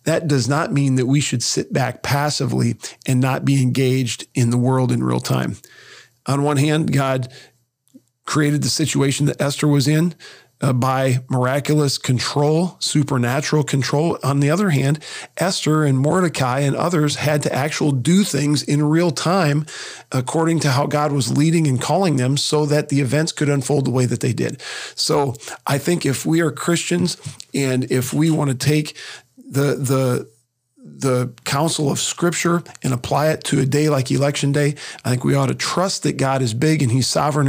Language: English